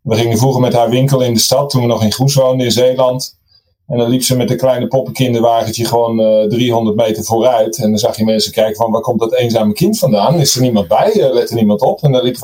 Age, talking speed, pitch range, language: 30-49, 265 wpm, 110-130 Hz, Dutch